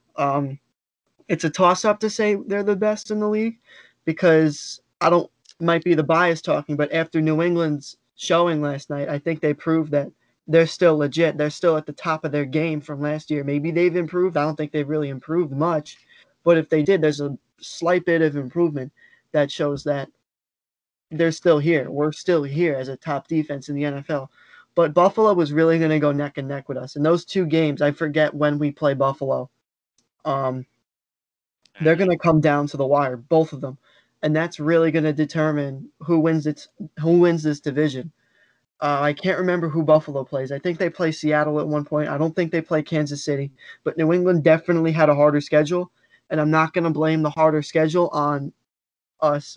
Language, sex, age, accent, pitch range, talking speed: English, male, 20-39, American, 145-170 Hz, 205 wpm